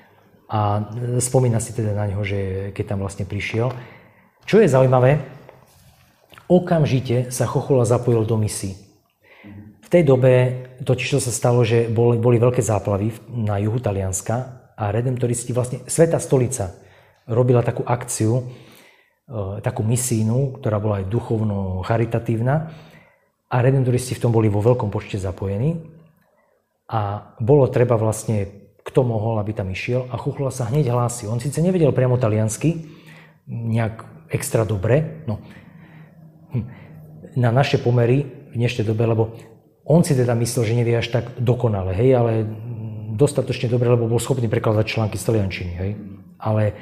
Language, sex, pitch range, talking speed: Slovak, male, 110-130 Hz, 135 wpm